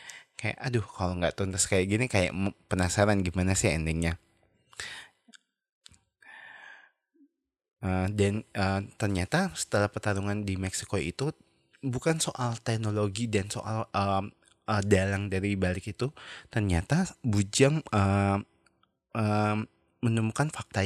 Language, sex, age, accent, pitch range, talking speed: Indonesian, male, 20-39, native, 90-110 Hz, 105 wpm